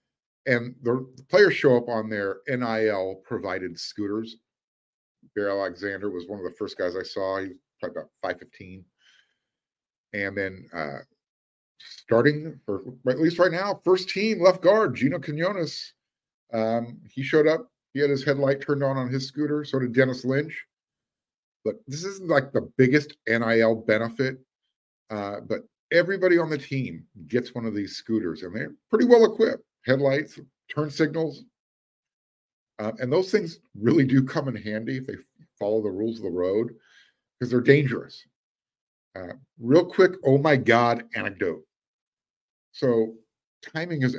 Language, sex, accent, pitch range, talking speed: English, male, American, 105-150 Hz, 155 wpm